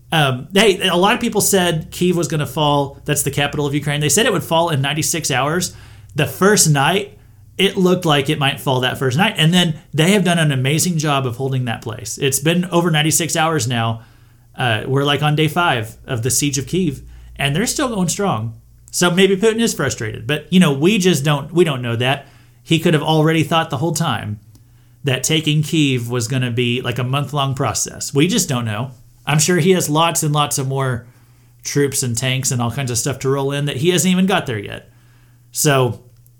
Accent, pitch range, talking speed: American, 125-180 Hz, 230 wpm